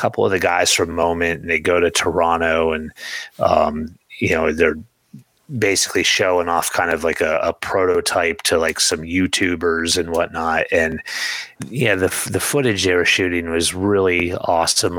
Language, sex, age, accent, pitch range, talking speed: English, male, 30-49, American, 85-95 Hz, 170 wpm